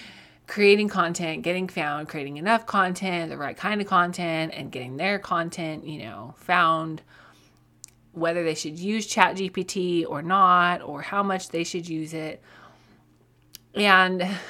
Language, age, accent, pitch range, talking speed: English, 20-39, American, 155-195 Hz, 145 wpm